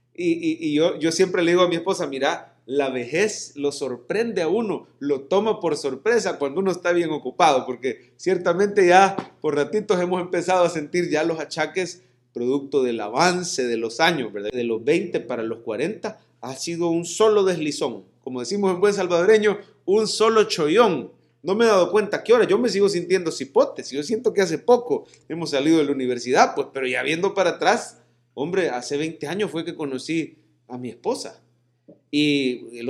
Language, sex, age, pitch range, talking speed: English, male, 30-49, 135-205 Hz, 195 wpm